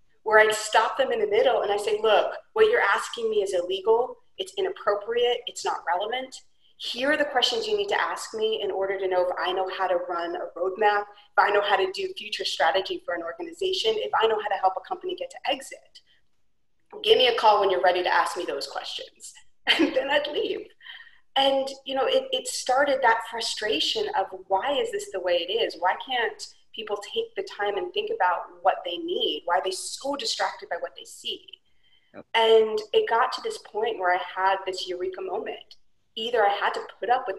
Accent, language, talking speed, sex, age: American, English, 220 wpm, female, 30-49